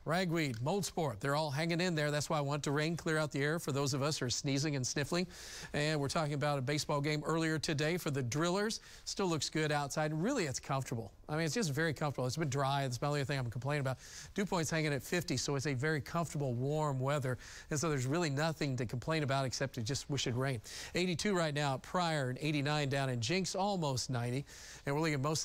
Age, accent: 40-59, American